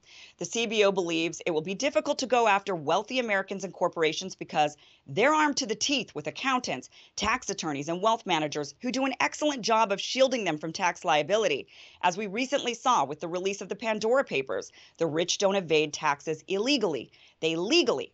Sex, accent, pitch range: female, American, 170-255 Hz